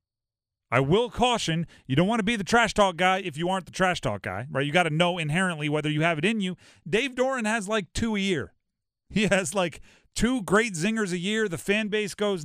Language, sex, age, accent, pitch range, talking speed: English, male, 30-49, American, 120-185 Hz, 240 wpm